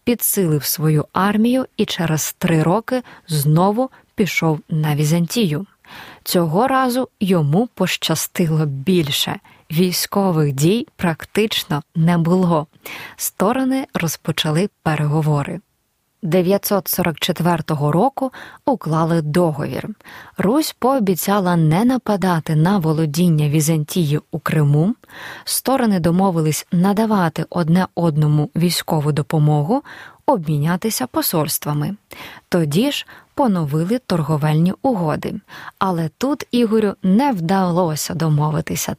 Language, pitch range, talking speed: Ukrainian, 160-210 Hz, 90 wpm